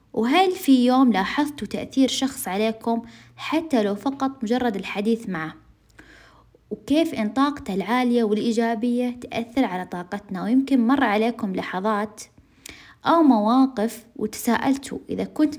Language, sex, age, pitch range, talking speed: Arabic, female, 20-39, 220-270 Hz, 115 wpm